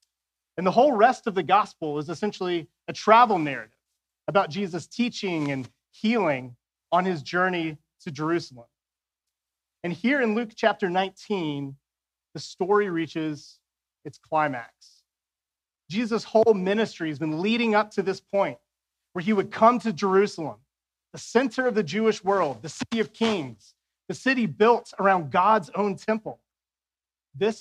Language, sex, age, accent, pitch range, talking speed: English, male, 30-49, American, 140-210 Hz, 145 wpm